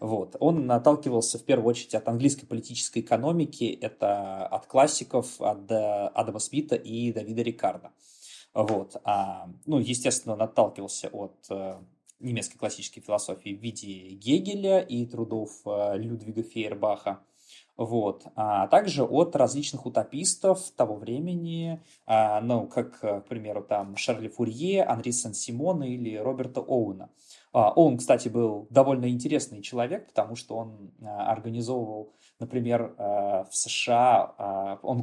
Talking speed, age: 115 wpm, 20-39